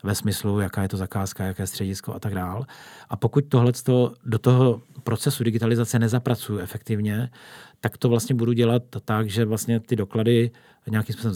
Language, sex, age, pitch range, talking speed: Slovak, male, 40-59, 110-120 Hz, 175 wpm